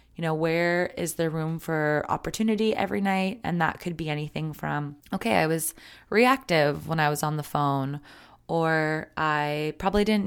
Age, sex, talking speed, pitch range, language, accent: 20-39, female, 175 wpm, 155-190 Hz, English, American